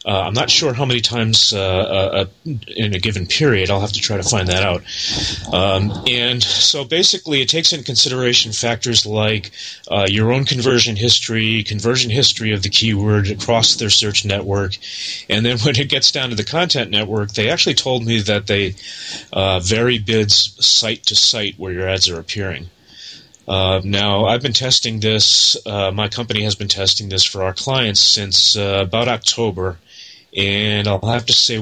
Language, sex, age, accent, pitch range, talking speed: English, male, 30-49, American, 100-120 Hz, 185 wpm